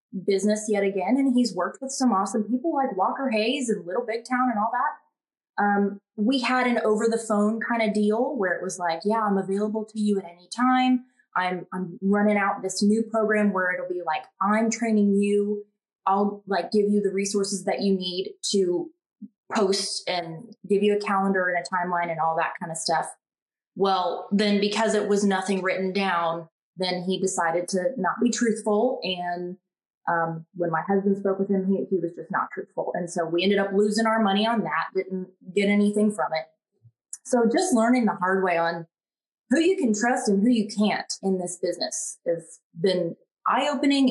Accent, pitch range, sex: American, 185-230 Hz, female